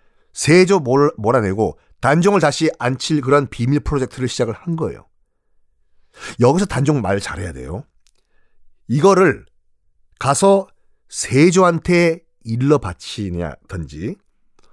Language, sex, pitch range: Korean, male, 115-185 Hz